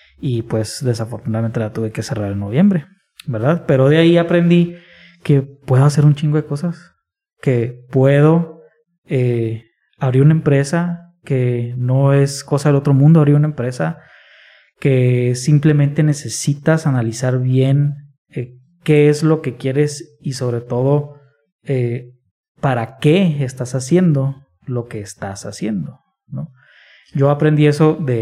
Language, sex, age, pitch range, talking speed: English, male, 20-39, 120-155 Hz, 140 wpm